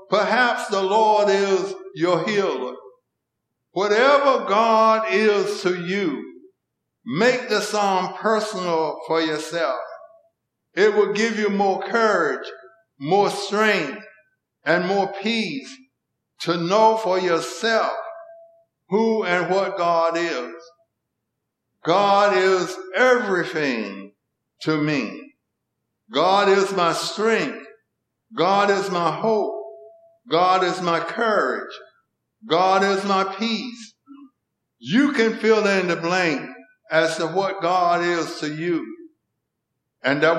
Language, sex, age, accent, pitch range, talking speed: English, male, 60-79, American, 180-225 Hz, 110 wpm